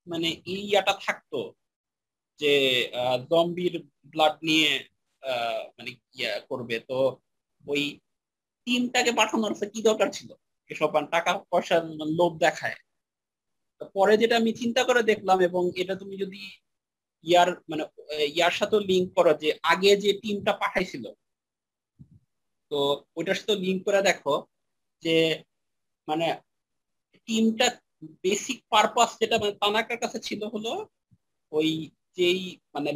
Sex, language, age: male, Bengali, 50-69